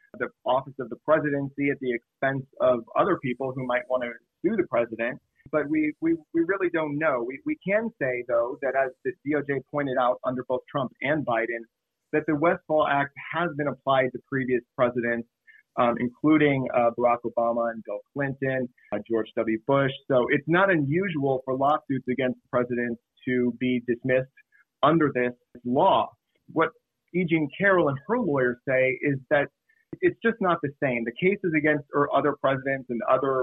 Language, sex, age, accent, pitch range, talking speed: English, male, 30-49, American, 125-150 Hz, 180 wpm